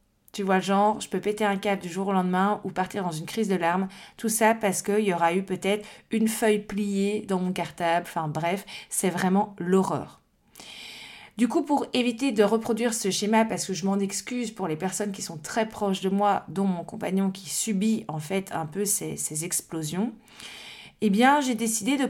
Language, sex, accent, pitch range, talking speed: French, female, French, 185-225 Hz, 210 wpm